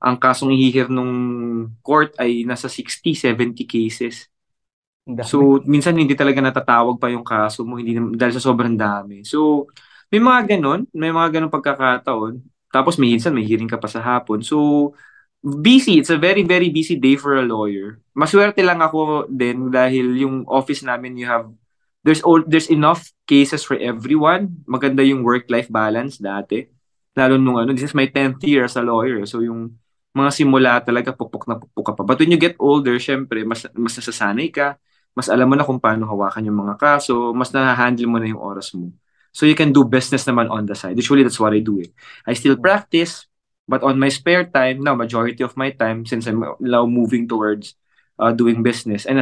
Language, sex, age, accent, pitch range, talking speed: English, male, 20-39, Filipino, 115-140 Hz, 195 wpm